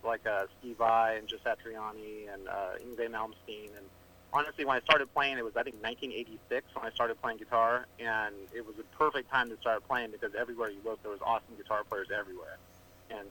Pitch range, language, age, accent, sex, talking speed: 105-125 Hz, English, 30-49, American, male, 205 wpm